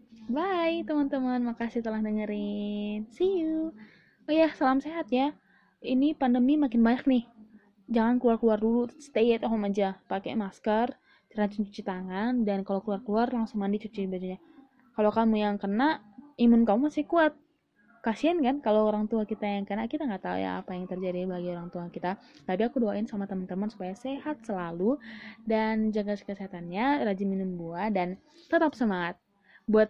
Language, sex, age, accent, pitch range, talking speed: Indonesian, female, 20-39, native, 210-270 Hz, 165 wpm